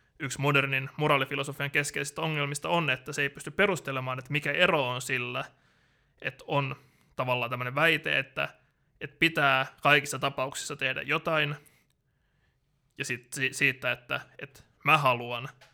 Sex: male